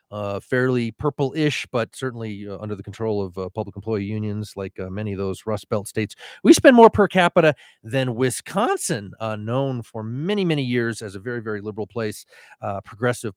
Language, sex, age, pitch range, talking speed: English, male, 40-59, 105-130 Hz, 195 wpm